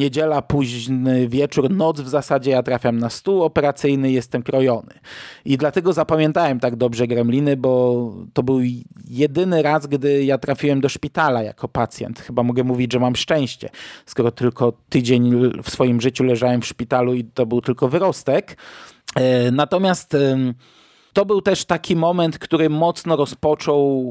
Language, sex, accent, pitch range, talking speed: Polish, male, native, 125-150 Hz, 150 wpm